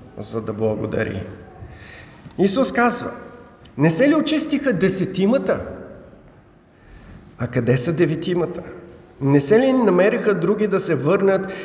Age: 50-69